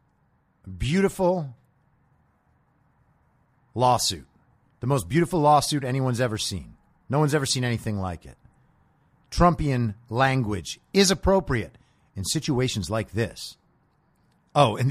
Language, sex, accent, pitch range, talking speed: English, male, American, 110-155 Hz, 105 wpm